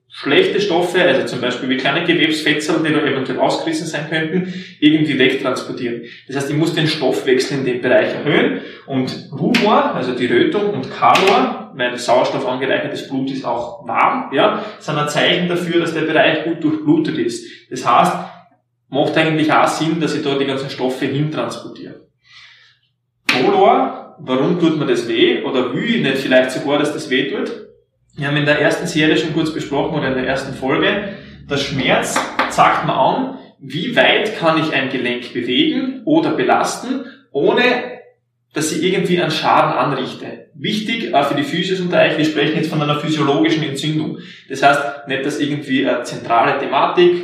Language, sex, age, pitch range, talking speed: German, male, 20-39, 140-190 Hz, 175 wpm